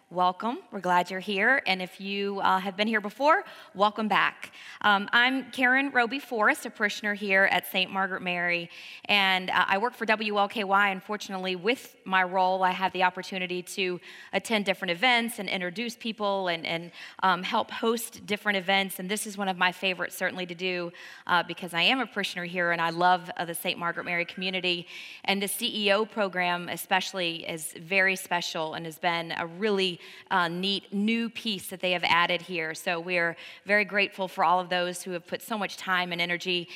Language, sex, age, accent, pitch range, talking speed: English, female, 20-39, American, 175-205 Hz, 195 wpm